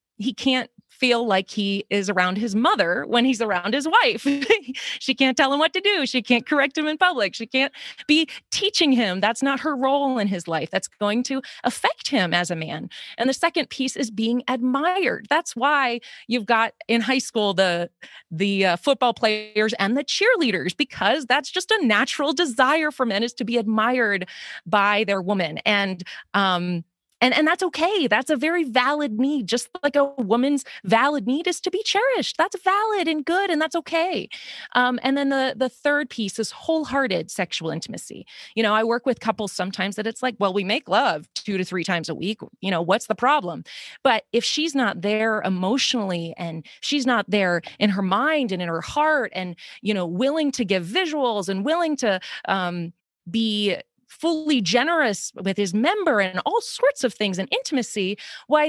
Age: 30-49